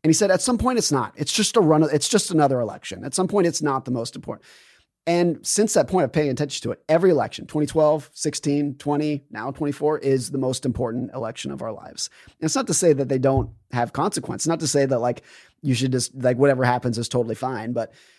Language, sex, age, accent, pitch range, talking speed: English, male, 30-49, American, 125-160 Hz, 245 wpm